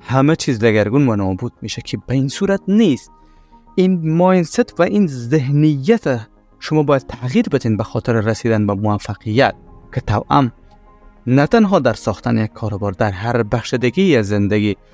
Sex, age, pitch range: male, 30-49, 105-150 Hz